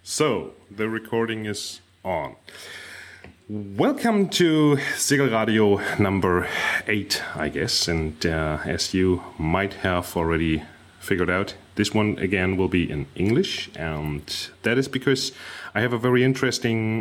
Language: German